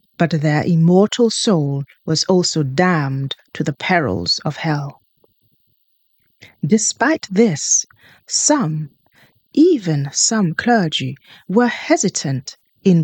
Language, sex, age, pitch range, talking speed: English, female, 30-49, 150-215 Hz, 95 wpm